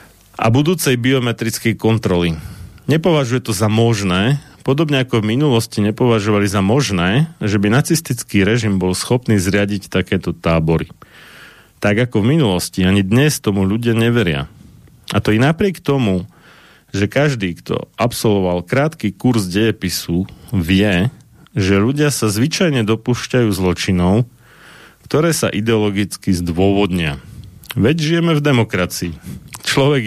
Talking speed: 120 wpm